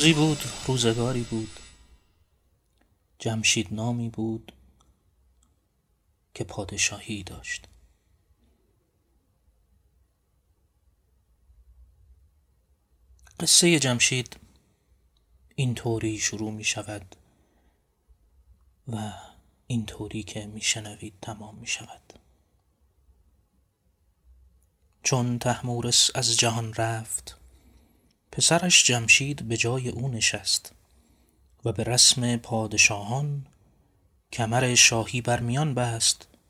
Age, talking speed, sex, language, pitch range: 30-49, 75 wpm, male, Persian, 80-120 Hz